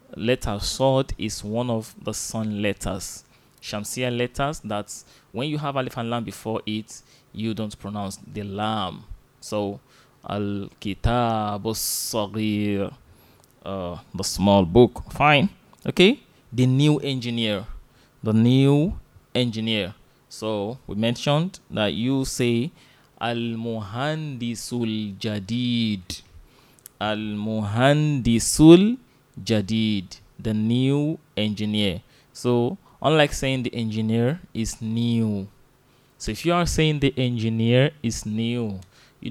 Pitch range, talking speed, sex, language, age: 105-135 Hz, 105 wpm, male, English, 20-39